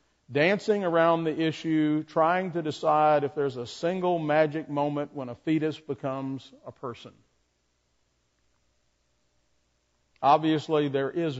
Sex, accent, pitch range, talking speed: male, American, 115-170 Hz, 115 wpm